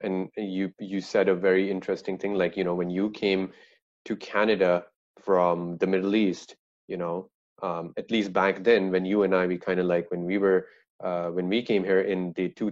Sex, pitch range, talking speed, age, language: male, 90-100 Hz, 210 wpm, 30-49, English